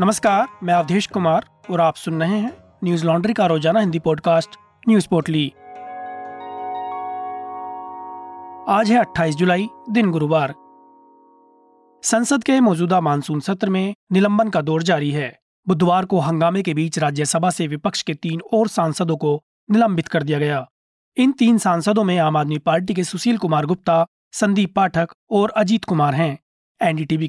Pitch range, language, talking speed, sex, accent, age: 165-215 Hz, Hindi, 150 wpm, male, native, 30-49